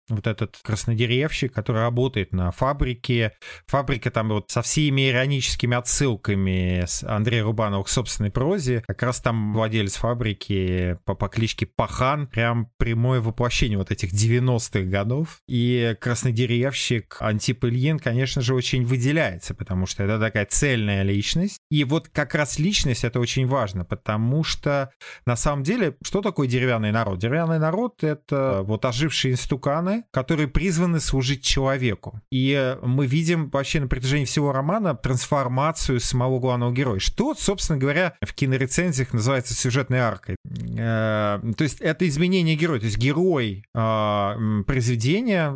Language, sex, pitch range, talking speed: Russian, male, 115-145 Hz, 140 wpm